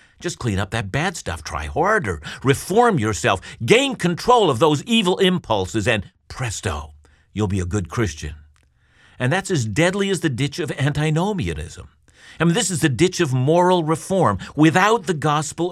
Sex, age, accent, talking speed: male, 50-69, American, 170 wpm